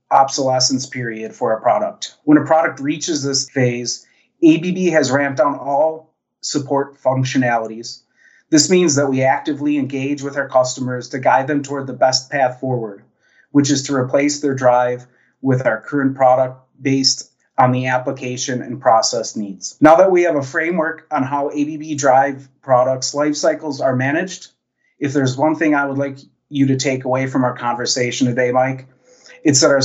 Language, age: English, 30-49